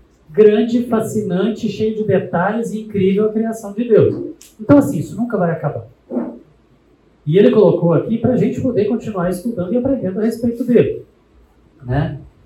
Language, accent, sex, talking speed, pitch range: Portuguese, Brazilian, male, 160 wpm, 155-220 Hz